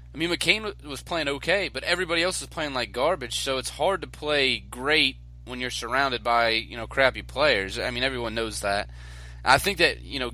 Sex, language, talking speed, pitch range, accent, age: male, English, 215 wpm, 110-145 Hz, American, 20-39